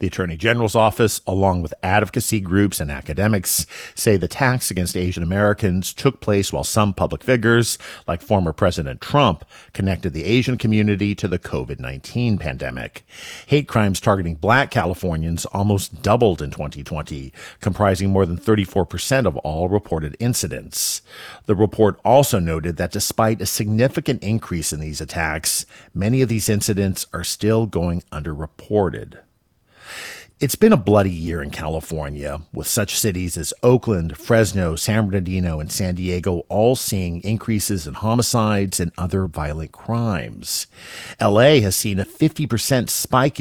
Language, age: English, 50-69